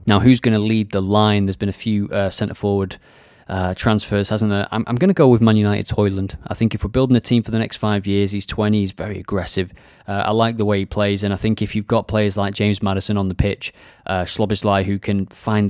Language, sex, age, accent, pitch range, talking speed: English, male, 30-49, British, 100-120 Hz, 260 wpm